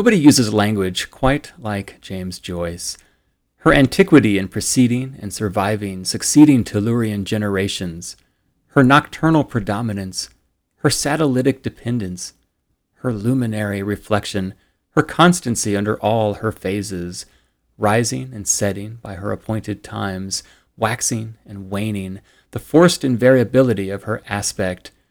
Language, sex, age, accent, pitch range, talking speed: English, male, 30-49, American, 95-120 Hz, 110 wpm